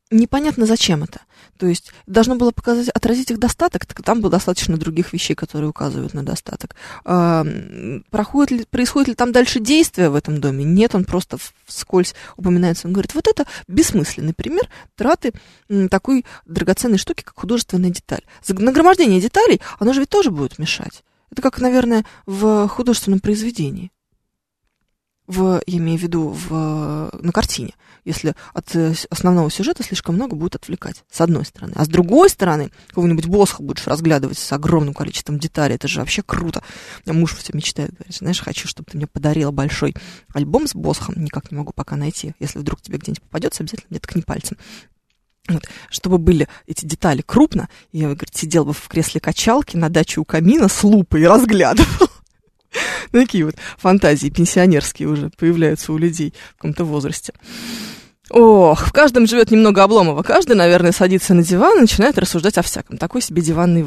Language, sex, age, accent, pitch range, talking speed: Russian, female, 20-39, native, 160-225 Hz, 165 wpm